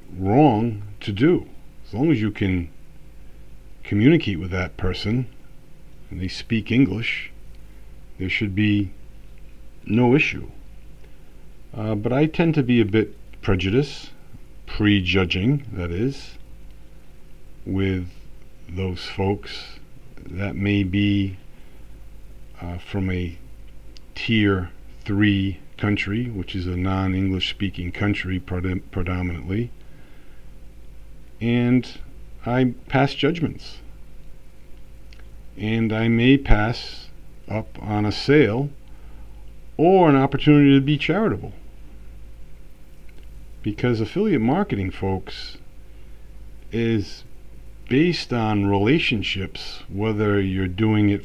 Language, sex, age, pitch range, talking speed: English, male, 50-69, 95-130 Hz, 100 wpm